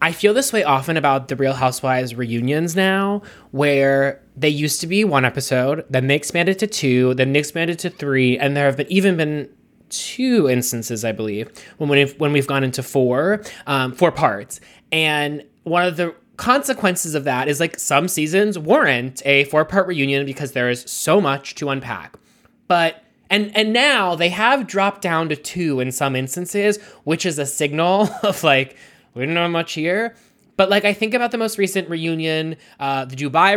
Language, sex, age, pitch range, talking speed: English, male, 20-39, 140-200 Hz, 190 wpm